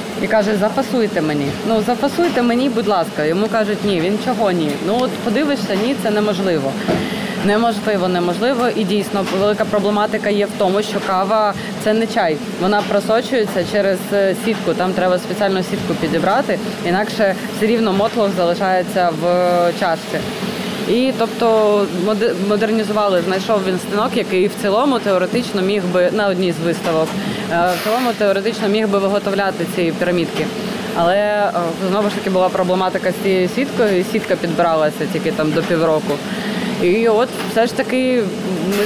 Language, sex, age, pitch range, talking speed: Ukrainian, female, 20-39, 185-220 Hz, 150 wpm